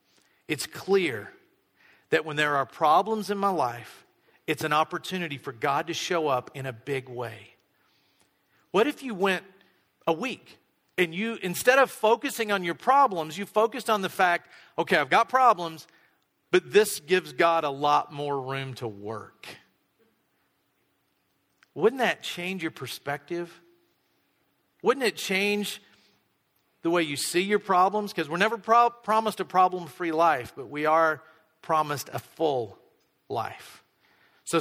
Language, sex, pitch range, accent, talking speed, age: English, male, 145-195 Hz, American, 145 wpm, 50-69